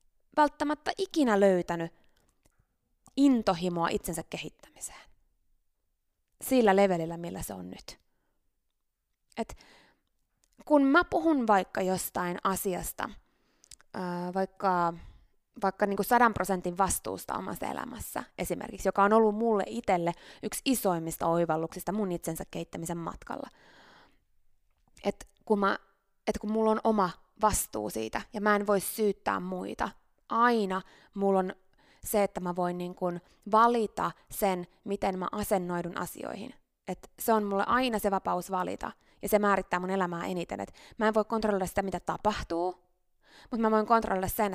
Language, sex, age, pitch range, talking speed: Finnish, female, 20-39, 180-230 Hz, 130 wpm